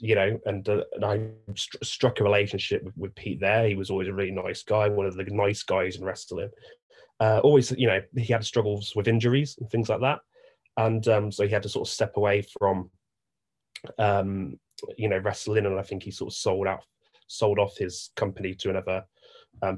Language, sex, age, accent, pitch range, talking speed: English, male, 20-39, British, 100-120 Hz, 215 wpm